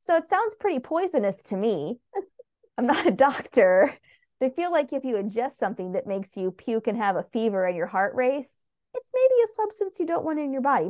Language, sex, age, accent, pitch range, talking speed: English, female, 20-39, American, 195-290 Hz, 225 wpm